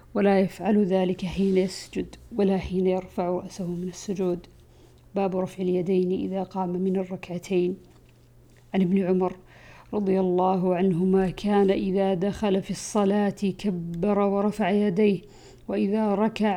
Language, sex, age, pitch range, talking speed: Arabic, female, 50-69, 190-215 Hz, 125 wpm